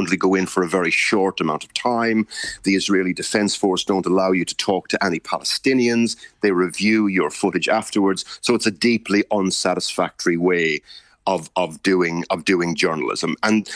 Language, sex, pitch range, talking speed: English, male, 95-115 Hz, 170 wpm